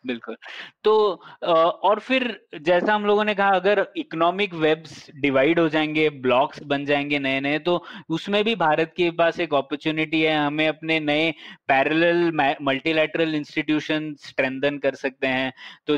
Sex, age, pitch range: male, 20-39, 135-170 Hz